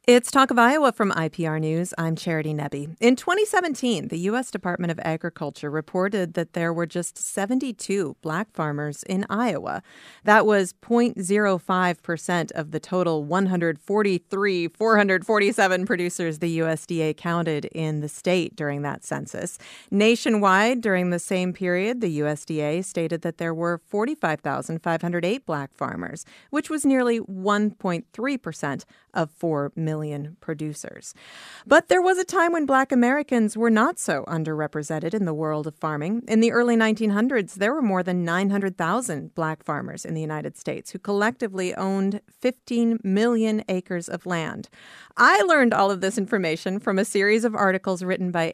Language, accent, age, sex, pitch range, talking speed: English, American, 40-59, female, 160-215 Hz, 150 wpm